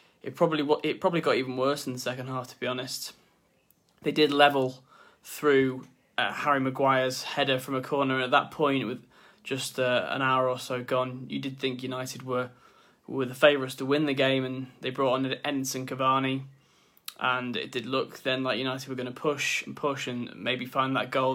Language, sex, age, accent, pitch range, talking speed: English, male, 20-39, British, 125-135 Hz, 200 wpm